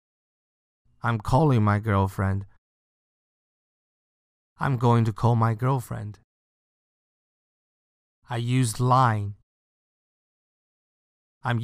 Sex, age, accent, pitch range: male, 30-49, American, 100-125 Hz